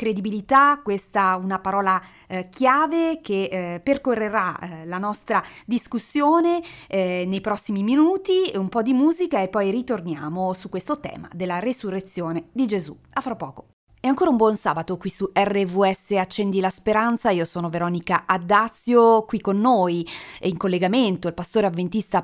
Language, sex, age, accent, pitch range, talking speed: Italian, female, 30-49, native, 175-225 Hz, 155 wpm